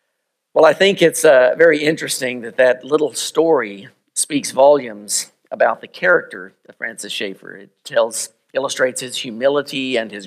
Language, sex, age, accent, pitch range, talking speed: English, male, 50-69, American, 120-155 Hz, 150 wpm